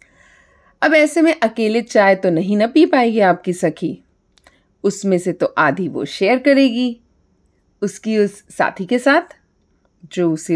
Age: 40-59